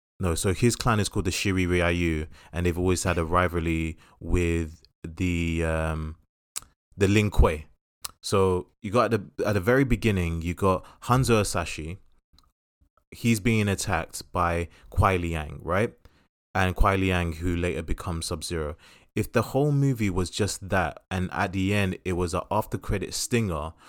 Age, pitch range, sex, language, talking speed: 20-39, 85-115 Hz, male, English, 165 wpm